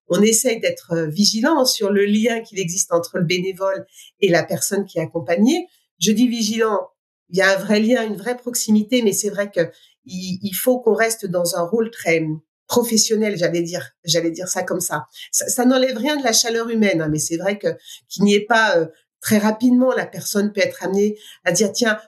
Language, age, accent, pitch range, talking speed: French, 50-69, French, 185-245 Hz, 215 wpm